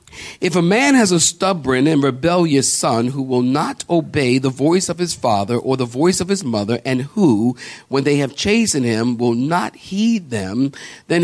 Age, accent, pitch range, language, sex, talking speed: 50-69, American, 115-155 Hz, English, male, 190 wpm